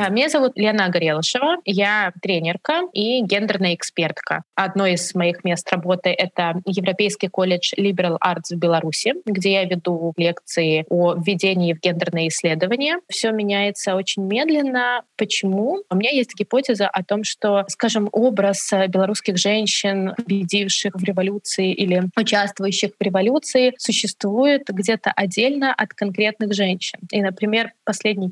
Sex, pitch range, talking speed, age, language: female, 190-225 Hz, 130 wpm, 20-39, Russian